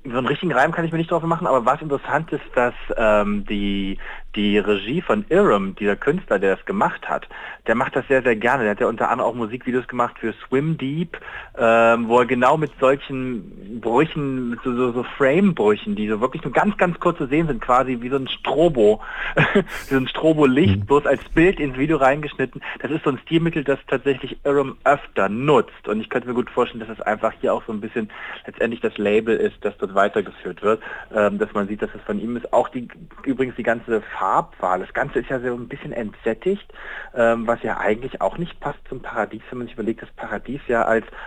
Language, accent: German, German